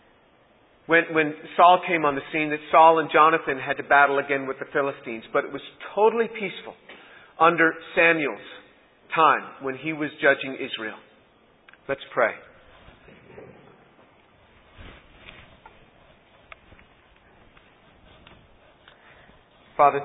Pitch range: 135-155 Hz